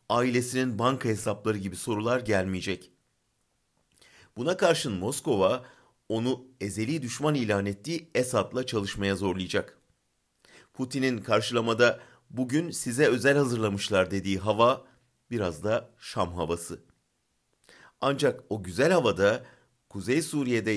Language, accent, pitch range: German, Turkish, 100-125 Hz